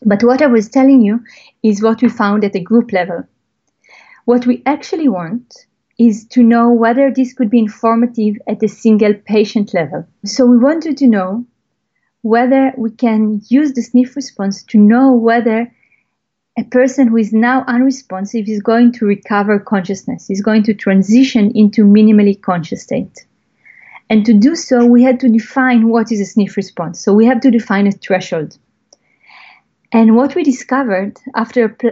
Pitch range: 205-250 Hz